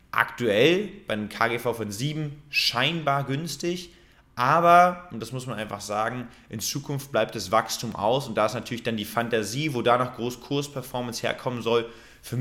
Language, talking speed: German, 175 wpm